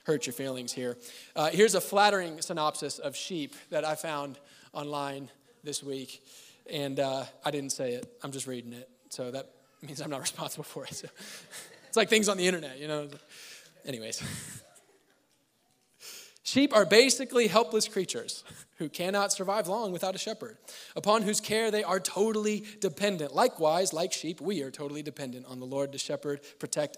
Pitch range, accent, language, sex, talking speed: 145-225 Hz, American, English, male, 170 wpm